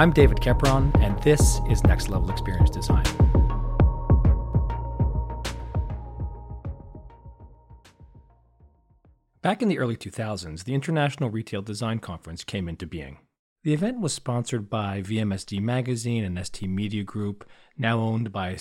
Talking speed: 120 wpm